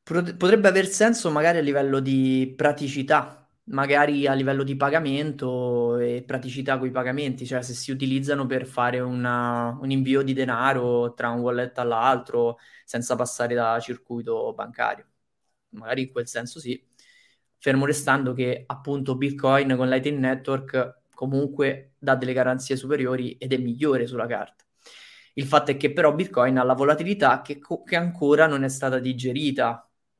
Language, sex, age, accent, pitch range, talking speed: Italian, male, 20-39, native, 125-150 Hz, 150 wpm